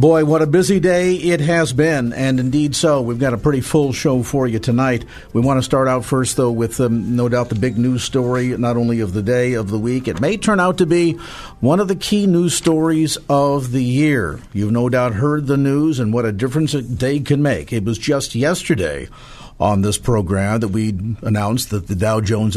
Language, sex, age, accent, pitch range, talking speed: English, male, 50-69, American, 110-140 Hz, 230 wpm